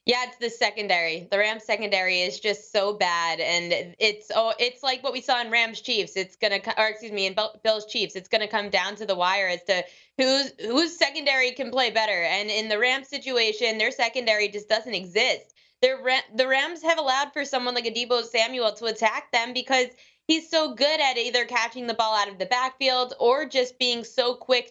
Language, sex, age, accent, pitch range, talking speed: English, female, 20-39, American, 200-255 Hz, 215 wpm